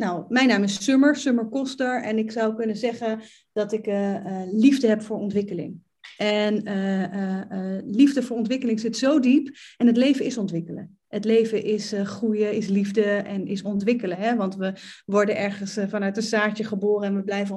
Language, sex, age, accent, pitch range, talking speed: Dutch, female, 30-49, Dutch, 210-255 Hz, 200 wpm